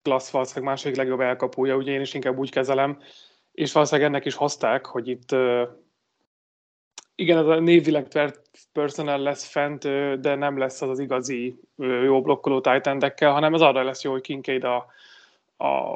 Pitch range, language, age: 130-145 Hz, Hungarian, 30-49